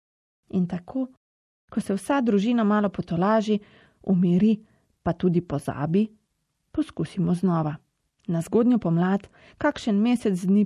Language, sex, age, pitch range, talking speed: Italian, female, 30-49, 170-225 Hz, 120 wpm